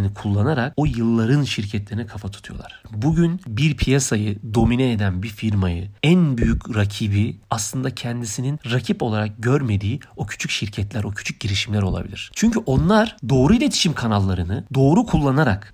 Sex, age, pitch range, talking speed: male, 40-59, 105-145 Hz, 135 wpm